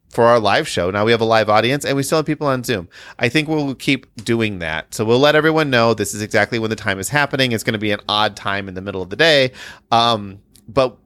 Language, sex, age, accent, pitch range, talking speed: English, male, 30-49, American, 100-140 Hz, 275 wpm